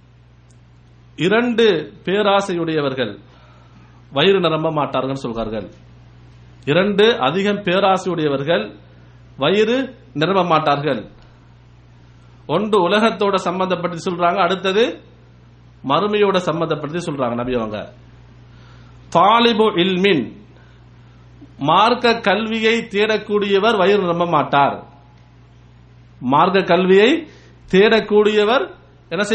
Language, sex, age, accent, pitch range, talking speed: English, male, 50-69, Indian, 120-205 Hz, 65 wpm